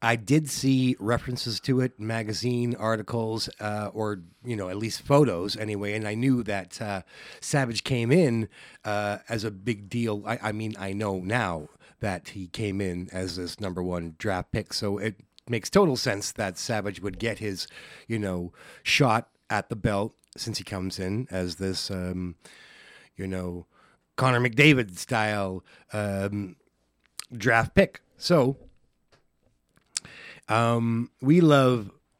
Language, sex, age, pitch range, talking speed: English, male, 30-49, 100-120 Hz, 145 wpm